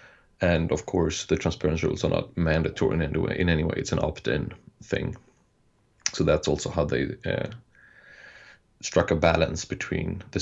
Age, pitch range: 30-49, 85-100 Hz